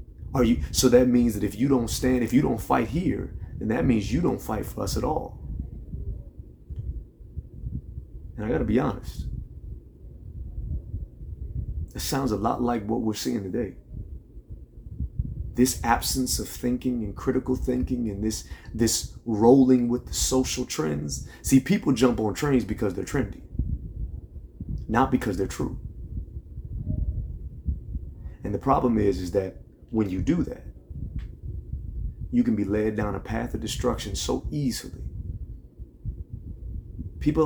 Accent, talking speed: American, 140 wpm